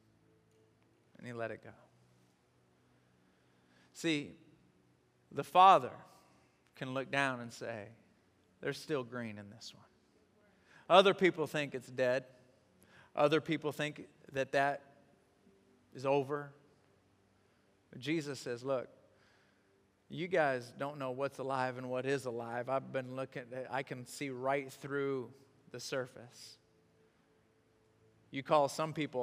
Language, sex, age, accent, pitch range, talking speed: English, male, 40-59, American, 110-150 Hz, 115 wpm